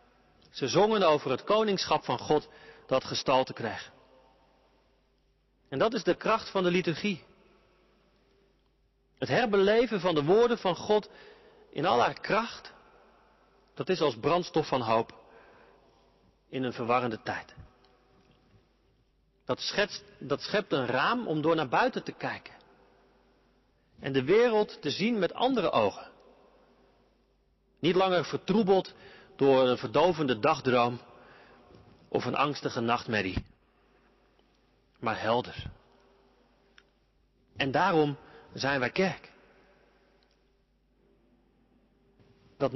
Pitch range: 135-200 Hz